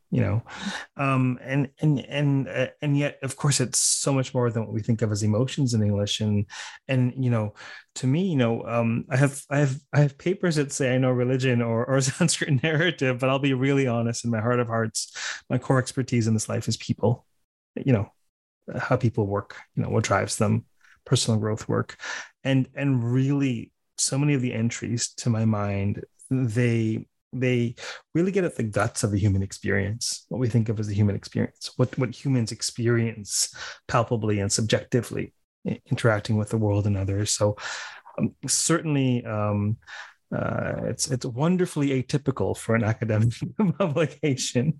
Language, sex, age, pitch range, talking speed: English, male, 30-49, 110-135 Hz, 180 wpm